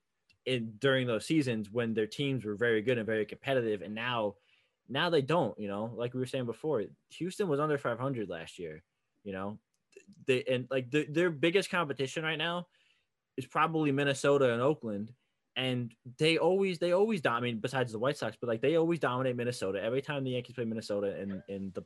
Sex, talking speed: male, 205 wpm